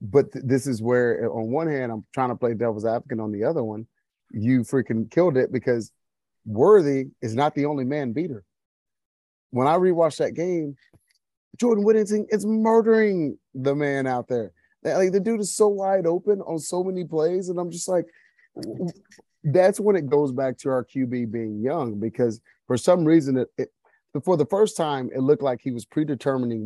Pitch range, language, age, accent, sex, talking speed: 115-160 Hz, English, 30-49, American, male, 190 wpm